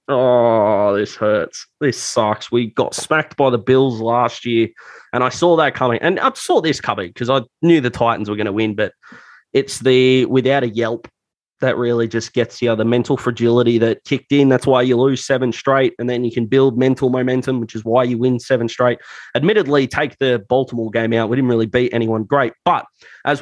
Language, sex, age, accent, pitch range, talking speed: English, male, 20-39, Australian, 115-130 Hz, 215 wpm